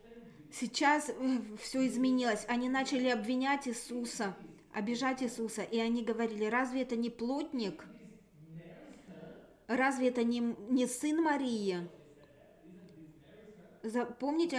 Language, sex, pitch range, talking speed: English, female, 220-255 Hz, 95 wpm